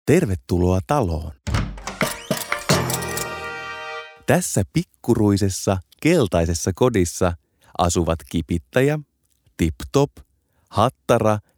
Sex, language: male, Finnish